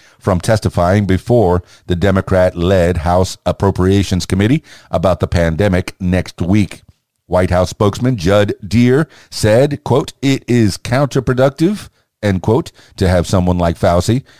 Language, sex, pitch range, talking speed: English, male, 90-110 Hz, 125 wpm